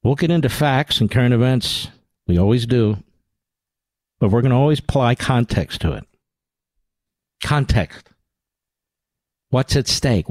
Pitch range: 100-130 Hz